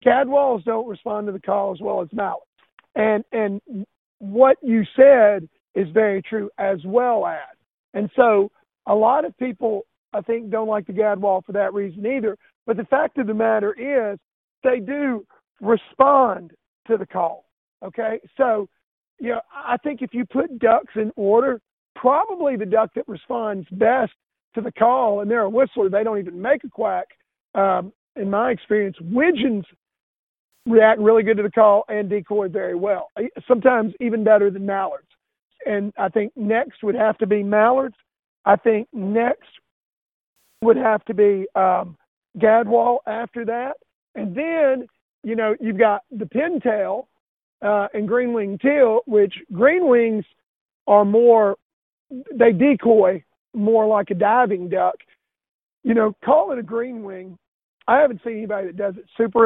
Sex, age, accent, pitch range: male, 50-69, American, 205-245 Hz